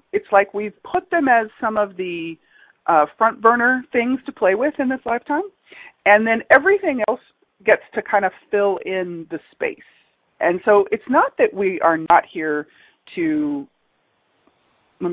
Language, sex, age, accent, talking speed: English, female, 40-59, American, 165 wpm